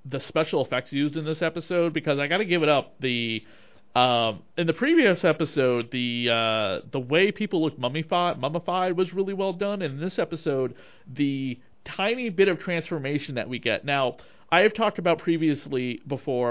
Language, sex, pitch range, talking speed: English, male, 125-175 Hz, 180 wpm